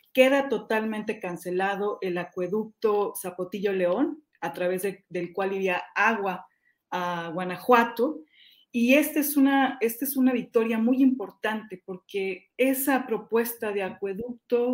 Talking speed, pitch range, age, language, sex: 120 wpm, 190-240 Hz, 40-59, Spanish, female